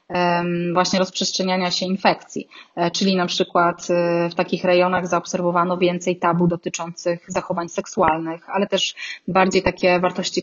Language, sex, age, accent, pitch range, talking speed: Polish, female, 20-39, native, 175-205 Hz, 120 wpm